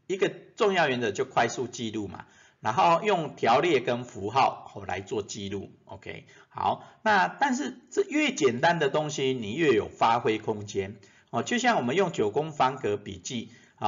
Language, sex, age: Chinese, male, 50-69